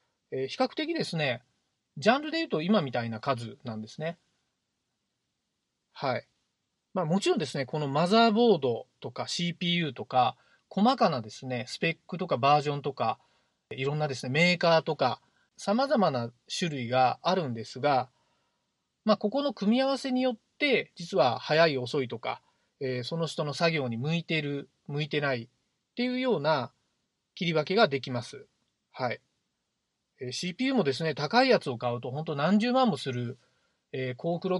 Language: Japanese